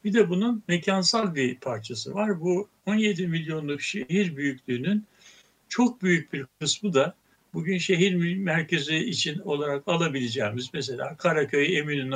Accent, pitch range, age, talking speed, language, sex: native, 135-190 Hz, 60-79, 125 wpm, Turkish, male